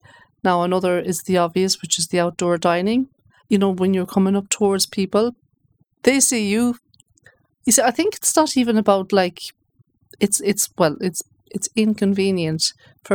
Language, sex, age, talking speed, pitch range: English, female, 40-59, 170 wpm, 180-215 Hz